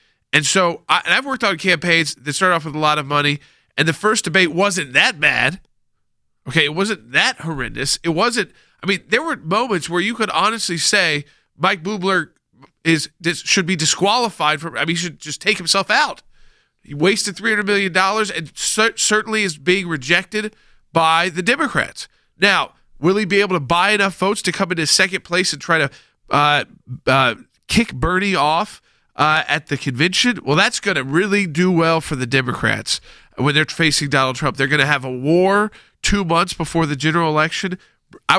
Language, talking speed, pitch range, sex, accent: English, 185 wpm, 150-195 Hz, male, American